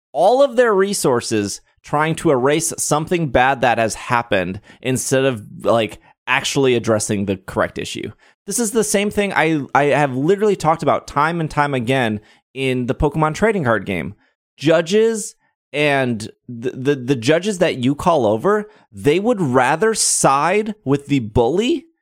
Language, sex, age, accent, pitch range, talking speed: English, male, 30-49, American, 125-165 Hz, 160 wpm